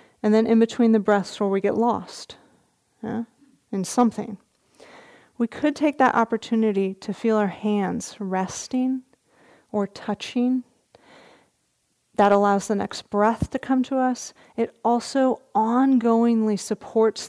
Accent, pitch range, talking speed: American, 205-245 Hz, 130 wpm